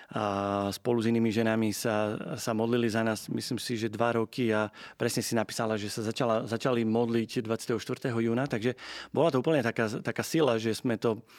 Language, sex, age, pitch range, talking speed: Slovak, male, 30-49, 110-125 Hz, 185 wpm